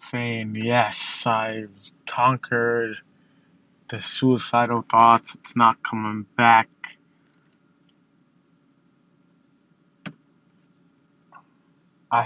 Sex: male